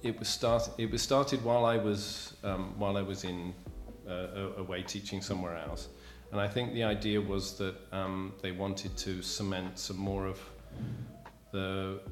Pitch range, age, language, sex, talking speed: 90-105 Hz, 40-59, Slovak, male, 180 wpm